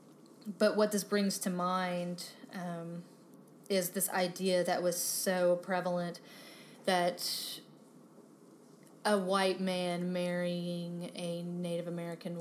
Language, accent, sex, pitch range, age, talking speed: English, American, female, 170-200 Hz, 20-39, 105 wpm